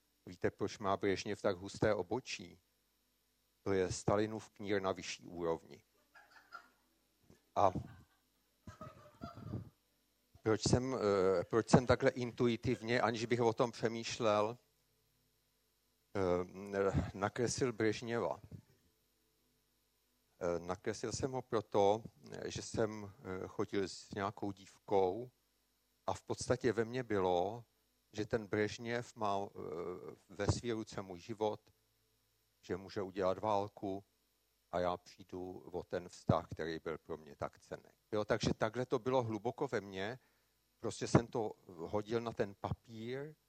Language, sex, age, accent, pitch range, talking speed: Czech, male, 50-69, native, 100-120 Hz, 115 wpm